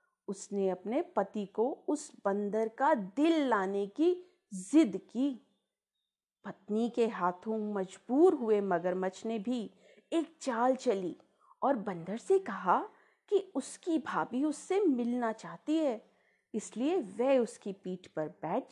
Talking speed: 130 wpm